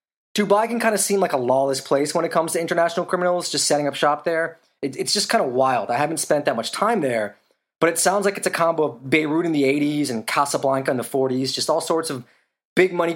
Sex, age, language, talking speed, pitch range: male, 20-39, English, 250 wpm, 130-165 Hz